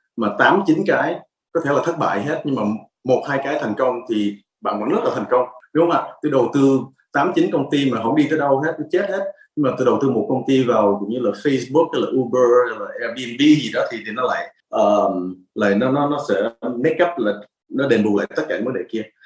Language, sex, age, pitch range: Vietnamese, male, 20-39, 105-140 Hz